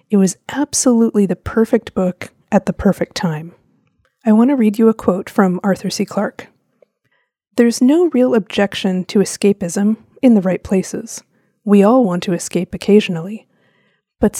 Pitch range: 190-235 Hz